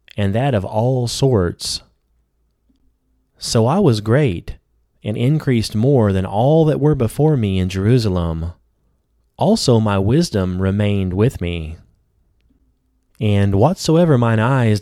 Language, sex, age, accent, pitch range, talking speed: English, male, 30-49, American, 90-125 Hz, 120 wpm